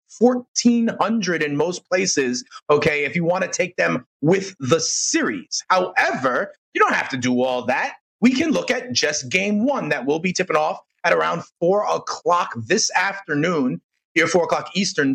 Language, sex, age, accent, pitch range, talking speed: English, male, 30-49, American, 185-250 Hz, 175 wpm